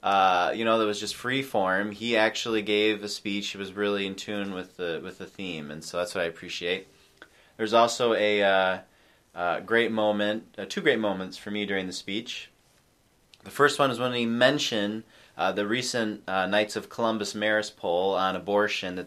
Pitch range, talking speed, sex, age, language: 95-115 Hz, 200 wpm, male, 20-39, English